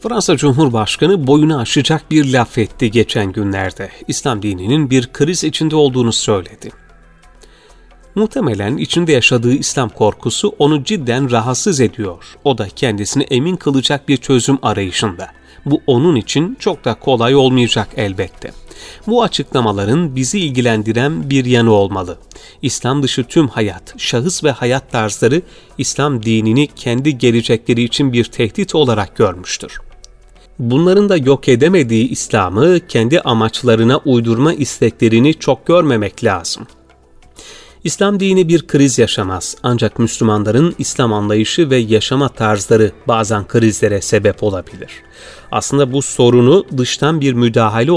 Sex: male